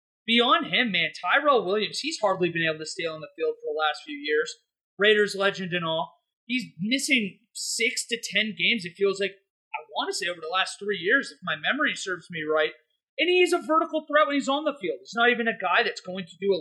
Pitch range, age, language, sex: 200-270 Hz, 30-49, English, male